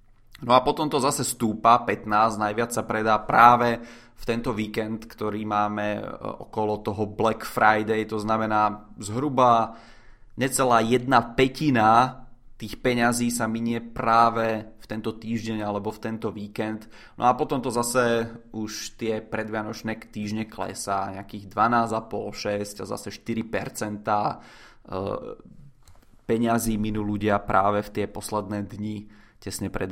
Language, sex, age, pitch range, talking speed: Czech, male, 20-39, 110-120 Hz, 130 wpm